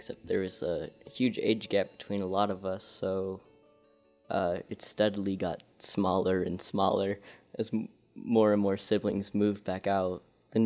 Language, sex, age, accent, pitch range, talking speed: English, male, 20-39, American, 100-115 Hz, 170 wpm